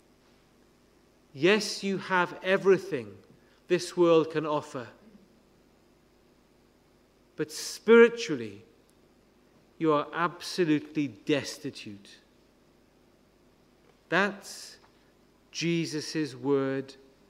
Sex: male